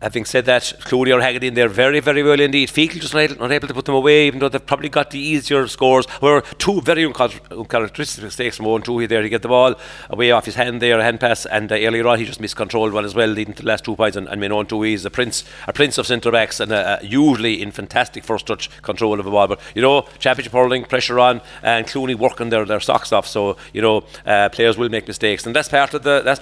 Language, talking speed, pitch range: English, 260 wpm, 110-130 Hz